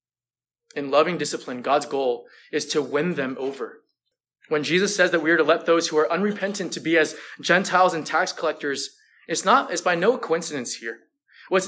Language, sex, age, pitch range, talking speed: English, male, 20-39, 145-205 Hz, 190 wpm